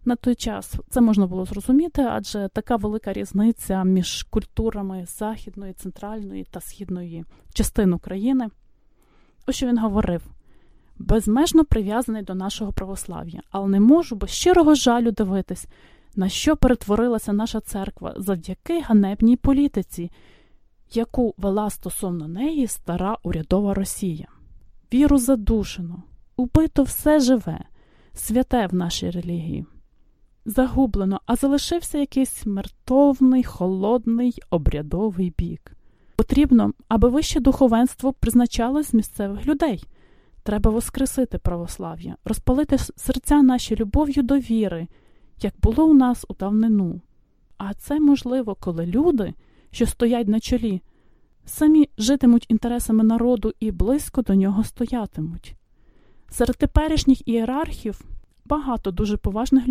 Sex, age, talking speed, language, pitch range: female, 20-39, 115 wpm, English, 195-260 Hz